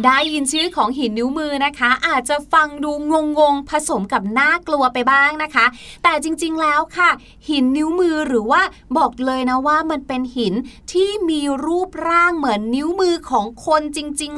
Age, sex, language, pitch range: 20-39, female, Thai, 215-295 Hz